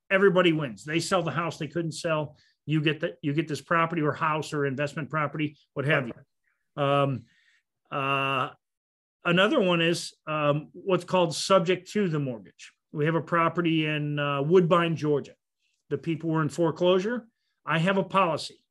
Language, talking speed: English, 170 wpm